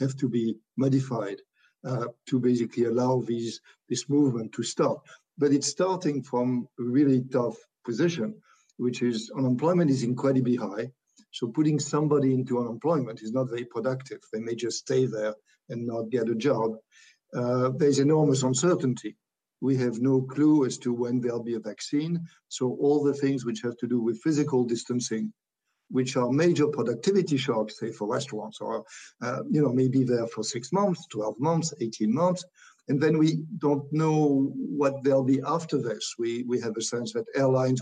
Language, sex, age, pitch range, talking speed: English, male, 60-79, 120-145 Hz, 175 wpm